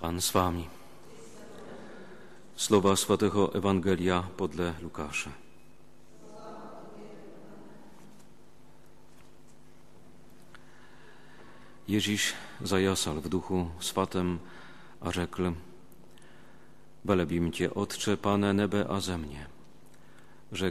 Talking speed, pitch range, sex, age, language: 70 wpm, 85-100 Hz, male, 40-59, Slovak